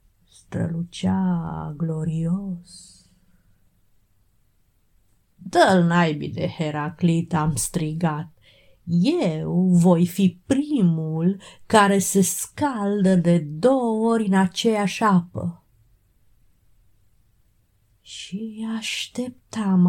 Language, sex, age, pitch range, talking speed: English, female, 30-49, 155-200 Hz, 70 wpm